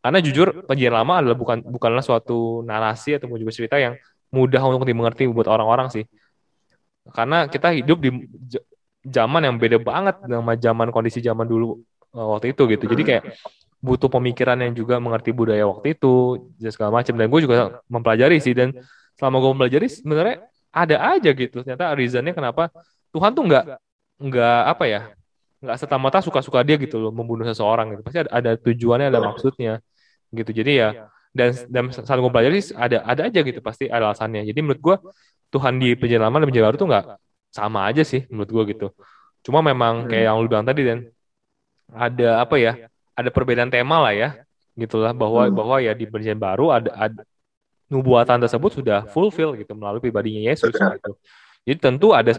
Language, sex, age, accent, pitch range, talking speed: Indonesian, male, 20-39, native, 115-135 Hz, 175 wpm